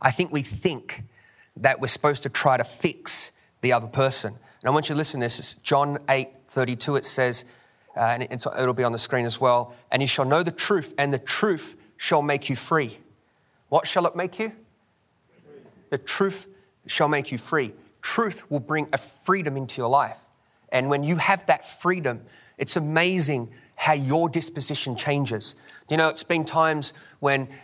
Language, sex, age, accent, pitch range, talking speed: English, male, 30-49, Australian, 135-160 Hz, 195 wpm